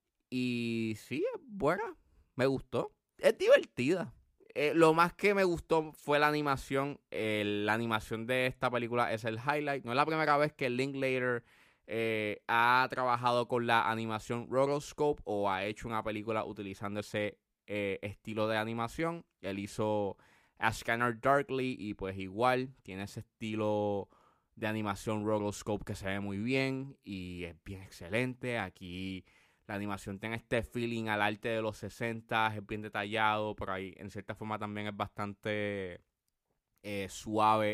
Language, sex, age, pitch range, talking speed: Spanish, male, 20-39, 100-130 Hz, 155 wpm